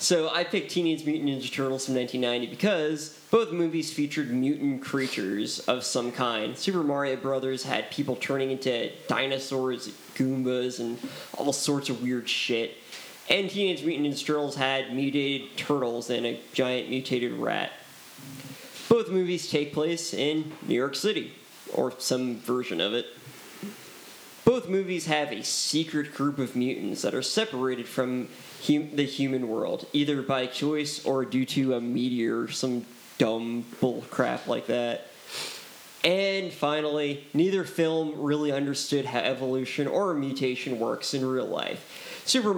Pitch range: 125-150 Hz